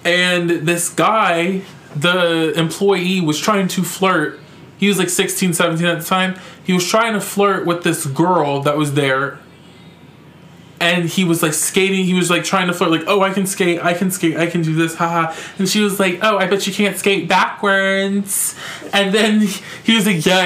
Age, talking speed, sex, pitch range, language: 20-39, 200 wpm, male, 160-195 Hz, English